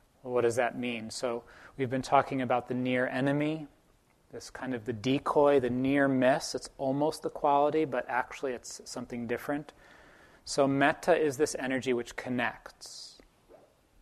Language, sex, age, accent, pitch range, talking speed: English, male, 30-49, American, 120-140 Hz, 155 wpm